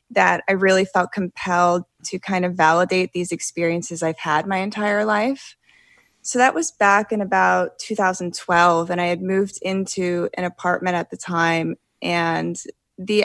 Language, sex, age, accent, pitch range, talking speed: English, female, 20-39, American, 180-205 Hz, 160 wpm